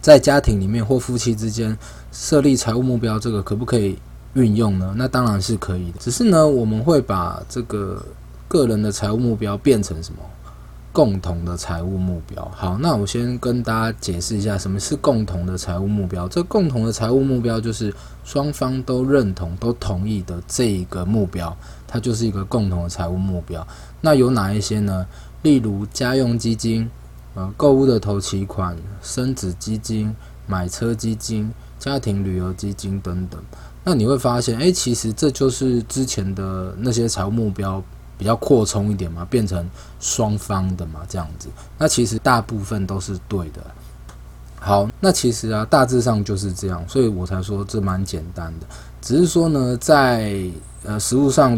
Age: 20-39